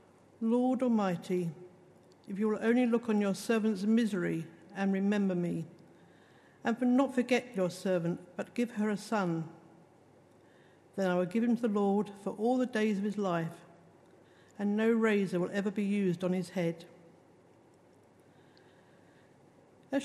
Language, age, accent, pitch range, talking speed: English, 60-79, British, 180-230 Hz, 150 wpm